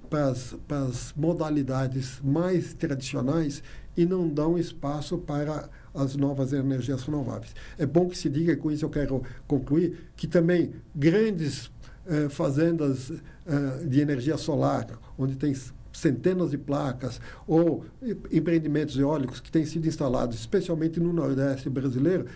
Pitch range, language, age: 140-170 Hz, English, 60-79